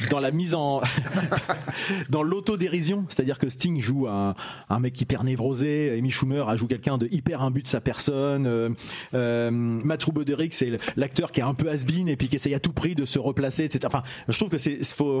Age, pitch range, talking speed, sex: 30-49, 130-180 Hz, 215 wpm, male